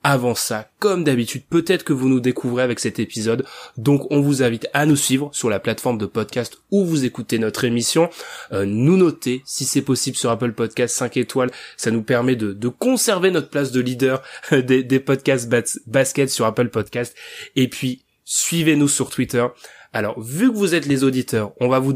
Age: 20-39